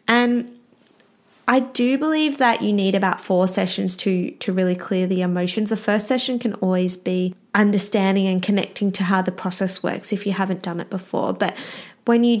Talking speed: 190 wpm